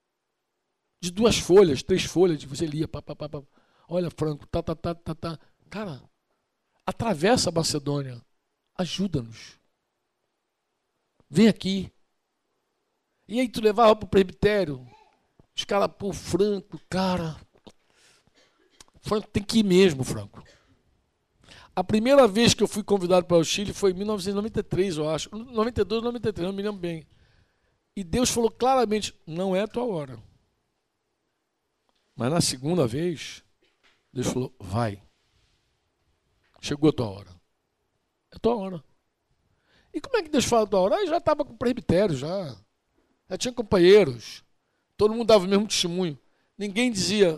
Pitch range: 150-210 Hz